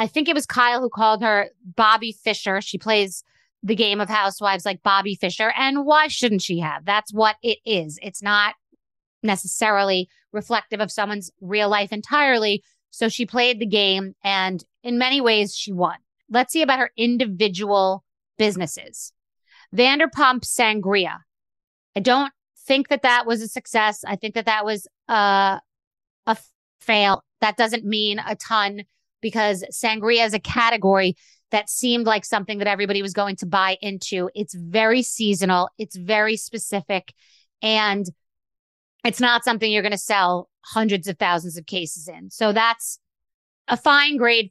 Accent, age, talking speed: American, 30-49, 160 wpm